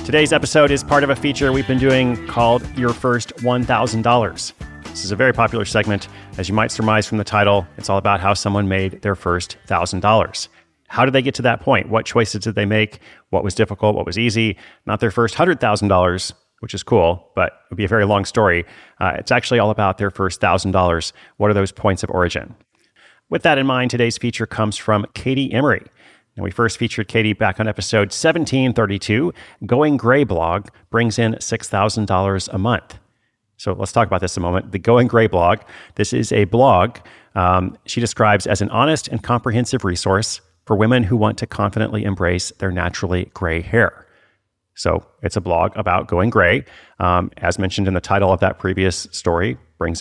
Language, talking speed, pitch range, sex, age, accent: English, 195 wpm, 95-120 Hz, male, 30-49, American